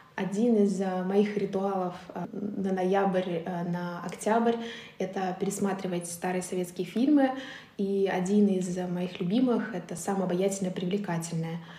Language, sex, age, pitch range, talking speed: Russian, female, 20-39, 185-210 Hz, 115 wpm